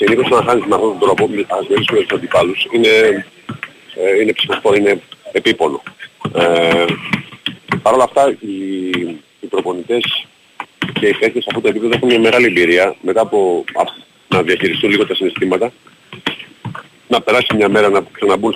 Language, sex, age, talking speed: Greek, male, 40-59, 150 wpm